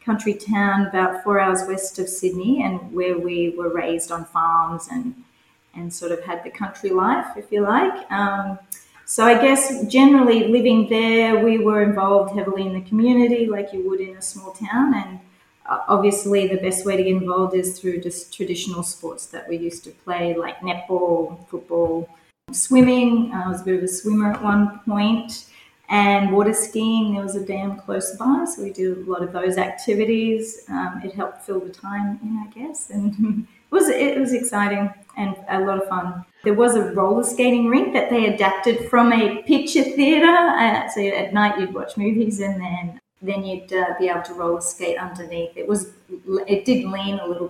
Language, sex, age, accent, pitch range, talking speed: English, female, 30-49, Australian, 185-225 Hz, 195 wpm